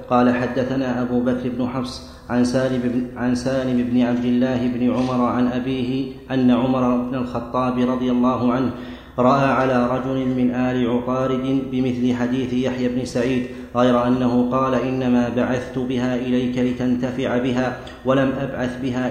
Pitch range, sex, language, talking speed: 125-130 Hz, male, Arabic, 140 wpm